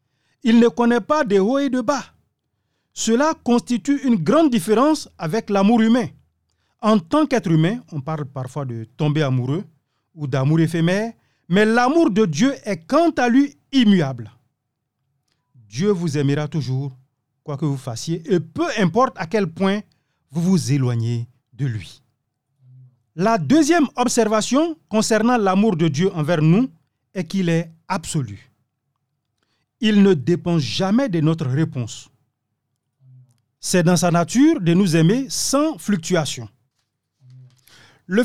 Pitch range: 135-215 Hz